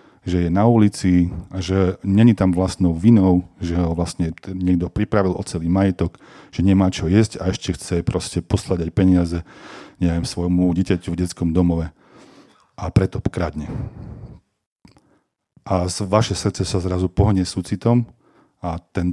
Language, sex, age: Slovak, male, 40-59